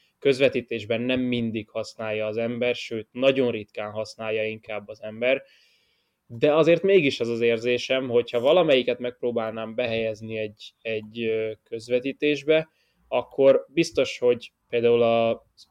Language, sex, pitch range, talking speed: Hungarian, male, 115-140 Hz, 120 wpm